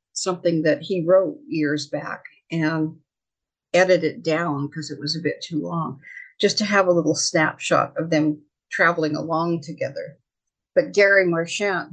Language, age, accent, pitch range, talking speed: English, 50-69, American, 150-185 Hz, 150 wpm